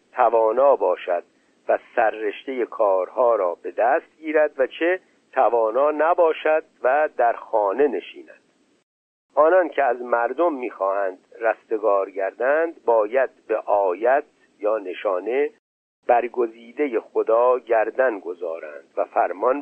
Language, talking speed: Persian, 105 wpm